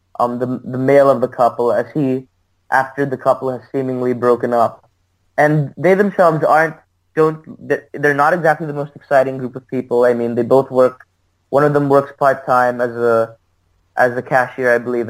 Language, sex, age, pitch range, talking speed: English, male, 20-39, 120-140 Hz, 190 wpm